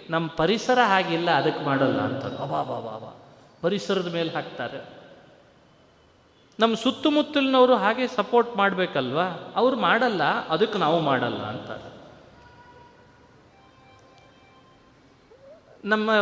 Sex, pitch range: male, 150-215 Hz